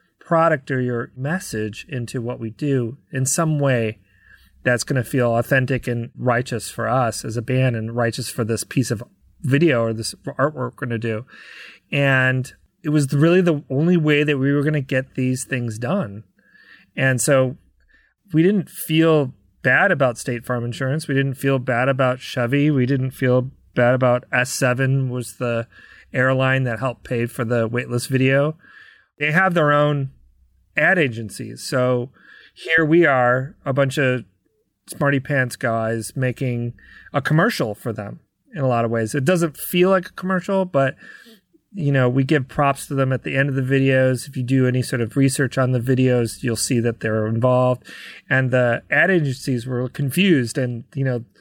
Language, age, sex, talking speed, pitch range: English, 30-49, male, 180 wpm, 125-150 Hz